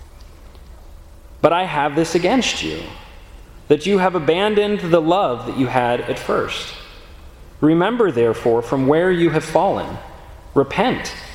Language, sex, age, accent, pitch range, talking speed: English, male, 30-49, American, 120-180 Hz, 130 wpm